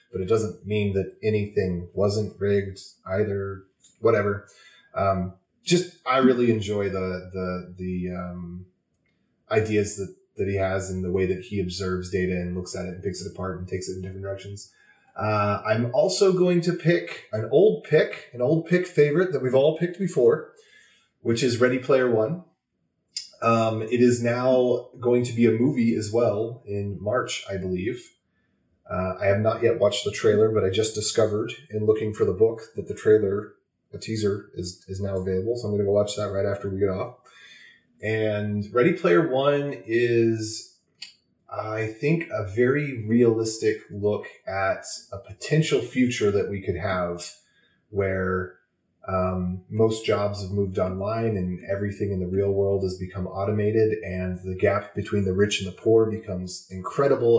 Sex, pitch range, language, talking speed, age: male, 95-120 Hz, English, 175 wpm, 30-49